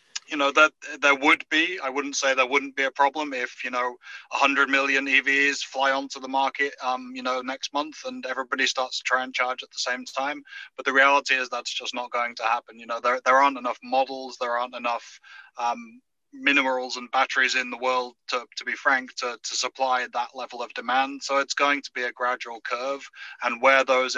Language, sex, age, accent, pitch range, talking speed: English, male, 20-39, British, 125-140 Hz, 220 wpm